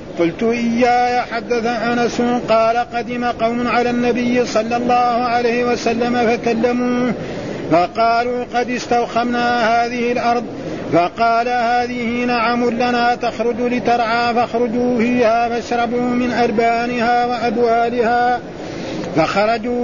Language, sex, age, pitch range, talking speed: Arabic, male, 50-69, 235-245 Hz, 95 wpm